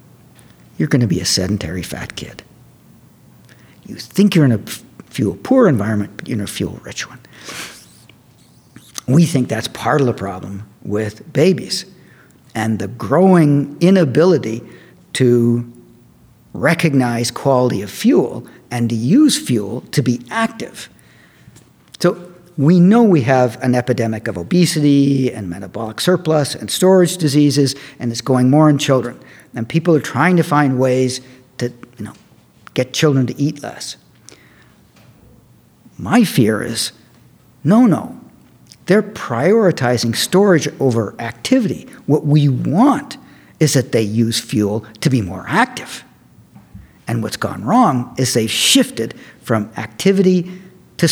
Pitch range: 115-165 Hz